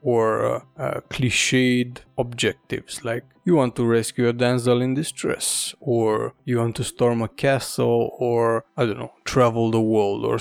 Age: 20-39